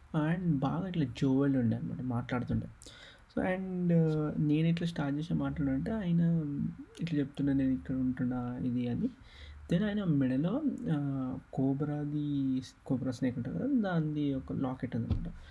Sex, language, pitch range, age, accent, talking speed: male, Telugu, 125-145 Hz, 30-49, native, 130 wpm